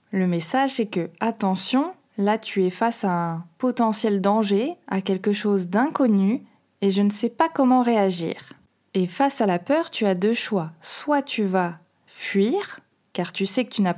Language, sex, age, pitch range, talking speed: French, female, 20-39, 190-240 Hz, 185 wpm